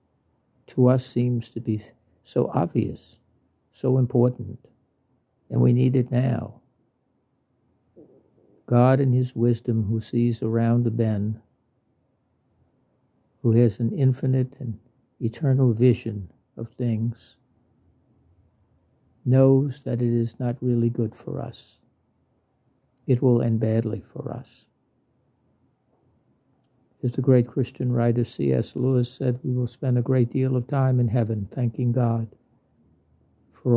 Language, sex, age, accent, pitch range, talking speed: English, male, 60-79, American, 115-130 Hz, 120 wpm